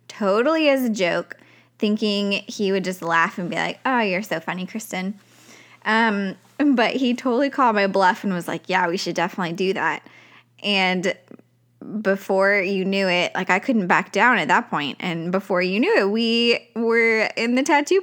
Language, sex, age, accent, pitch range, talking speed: English, female, 10-29, American, 180-230 Hz, 185 wpm